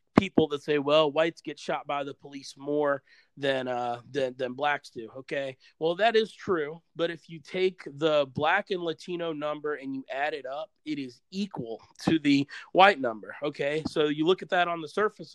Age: 30-49